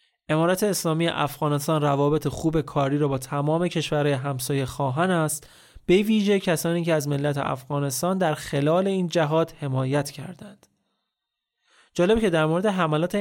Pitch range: 140-165 Hz